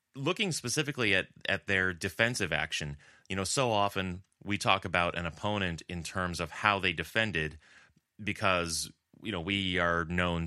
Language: English